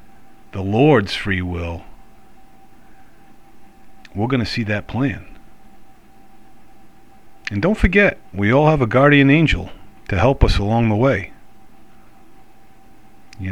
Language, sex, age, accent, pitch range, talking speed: English, male, 40-59, American, 90-110 Hz, 115 wpm